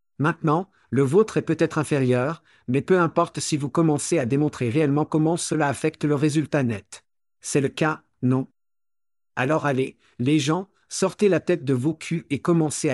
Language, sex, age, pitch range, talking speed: French, male, 50-69, 140-170 Hz, 170 wpm